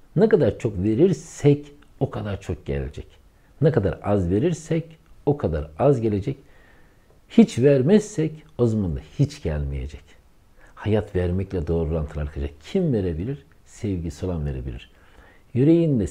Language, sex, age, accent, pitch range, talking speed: Turkish, male, 60-79, native, 80-130 Hz, 125 wpm